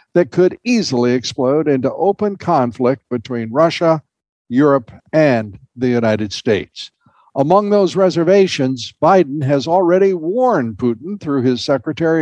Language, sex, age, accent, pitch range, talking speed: English, male, 60-79, American, 125-180 Hz, 125 wpm